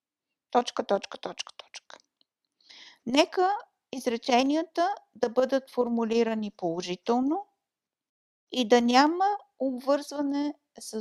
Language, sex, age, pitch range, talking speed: Bulgarian, female, 50-69, 235-290 Hz, 80 wpm